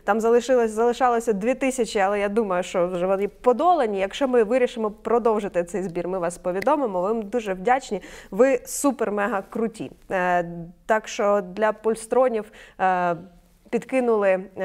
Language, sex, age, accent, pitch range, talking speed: Ukrainian, female, 20-39, native, 190-235 Hz, 145 wpm